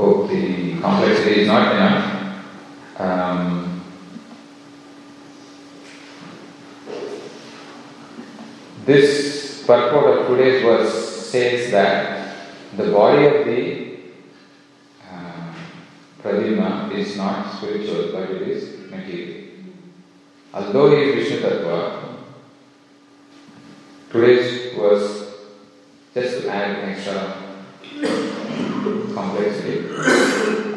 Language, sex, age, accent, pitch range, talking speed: English, male, 30-49, Indian, 95-130 Hz, 75 wpm